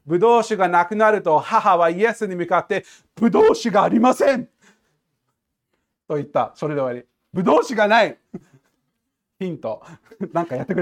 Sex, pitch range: male, 130-220 Hz